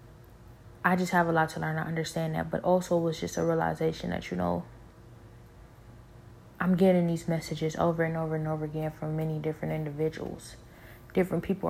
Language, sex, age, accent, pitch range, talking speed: English, female, 20-39, American, 120-170 Hz, 185 wpm